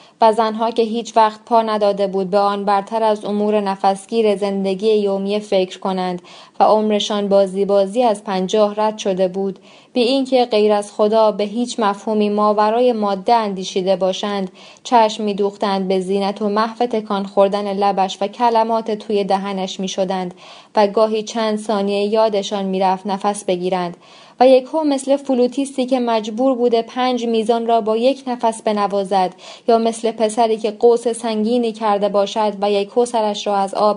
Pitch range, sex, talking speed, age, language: 200-230 Hz, female, 160 wpm, 20-39, Persian